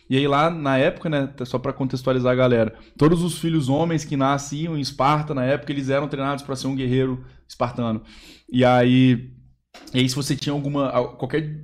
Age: 20-39